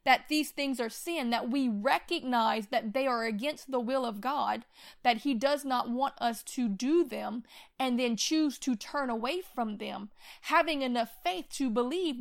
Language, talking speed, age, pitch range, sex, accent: English, 185 wpm, 30-49, 235-280 Hz, female, American